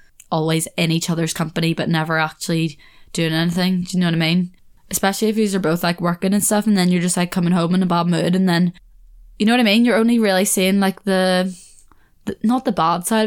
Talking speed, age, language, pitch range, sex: 240 wpm, 10-29, English, 175-210 Hz, female